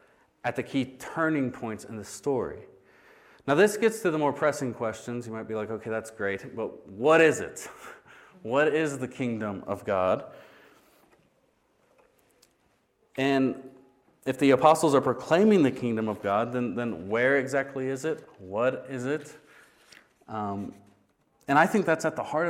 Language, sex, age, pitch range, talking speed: English, male, 30-49, 110-145 Hz, 160 wpm